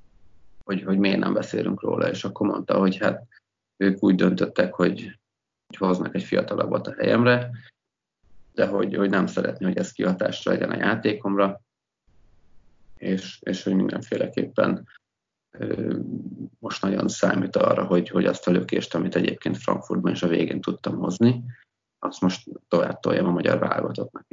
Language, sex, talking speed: Hungarian, male, 150 wpm